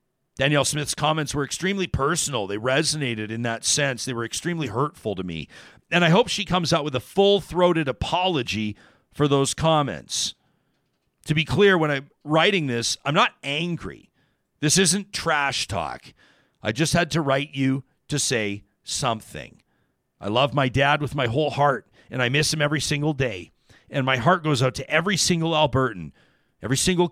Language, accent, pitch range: English, American, 125-165 Hz